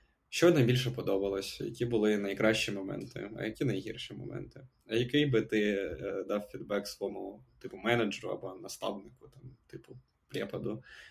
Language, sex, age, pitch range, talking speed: Ukrainian, male, 20-39, 105-120 Hz, 140 wpm